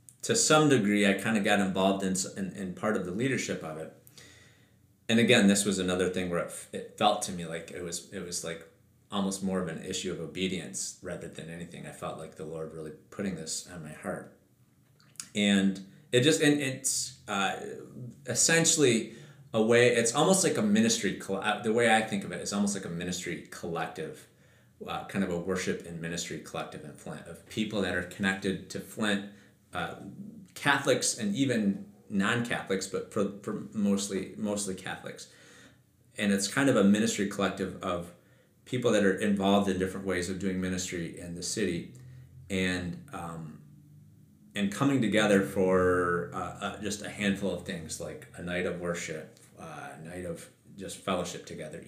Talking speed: 185 wpm